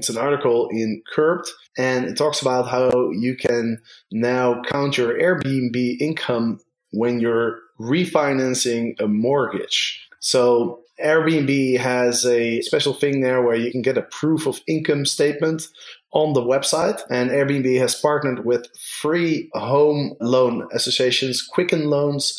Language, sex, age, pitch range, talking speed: English, male, 20-39, 115-140 Hz, 140 wpm